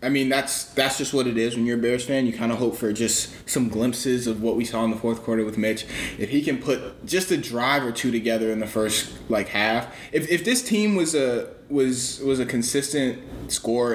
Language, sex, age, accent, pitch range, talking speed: English, male, 20-39, American, 100-125 Hz, 245 wpm